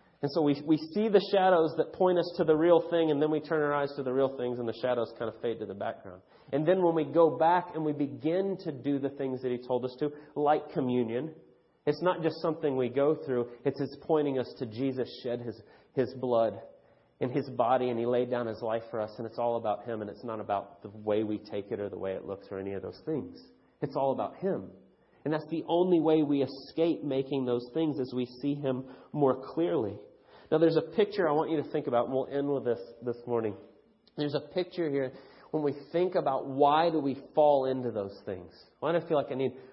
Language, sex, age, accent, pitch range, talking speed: English, male, 30-49, American, 125-160 Hz, 245 wpm